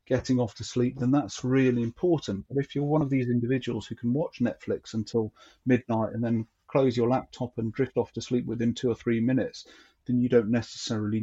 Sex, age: male, 40-59